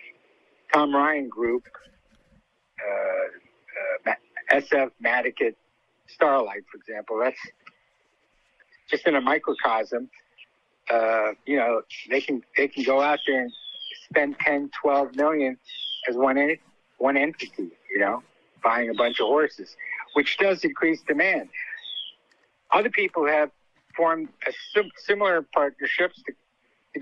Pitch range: 135-190 Hz